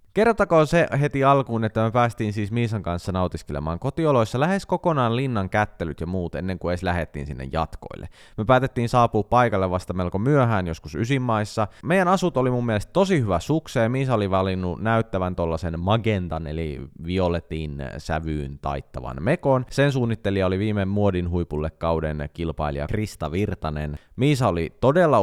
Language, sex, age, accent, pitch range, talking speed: Finnish, male, 20-39, native, 85-120 Hz, 155 wpm